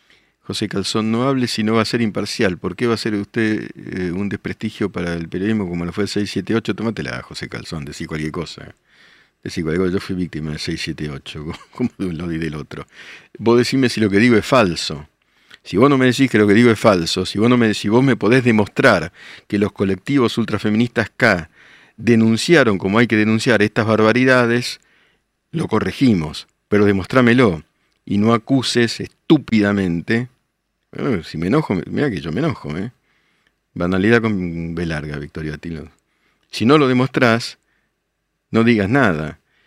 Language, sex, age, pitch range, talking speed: Spanish, male, 50-69, 95-115 Hz, 175 wpm